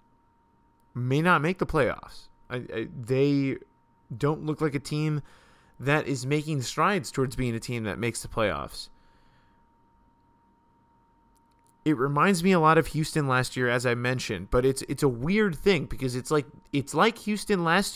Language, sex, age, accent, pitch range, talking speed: English, male, 20-39, American, 125-150 Hz, 165 wpm